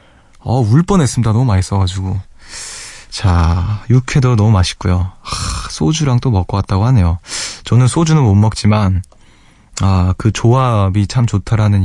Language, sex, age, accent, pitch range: Korean, male, 20-39, native, 100-130 Hz